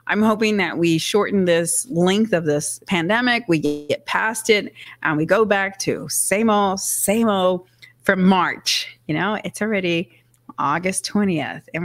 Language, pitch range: English, 165-200 Hz